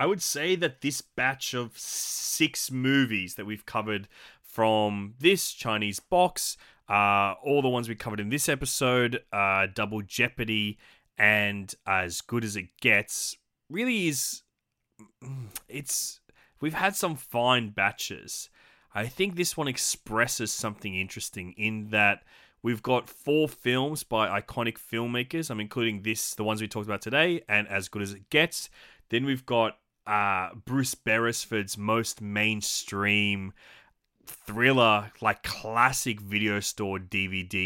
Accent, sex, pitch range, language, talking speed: Australian, male, 105-130 Hz, English, 140 wpm